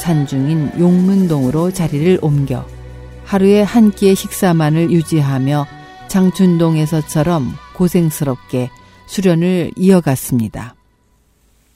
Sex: female